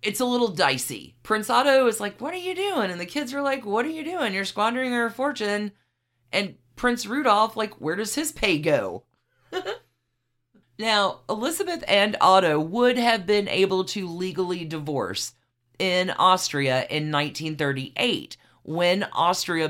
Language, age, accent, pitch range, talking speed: English, 40-59, American, 135-200 Hz, 155 wpm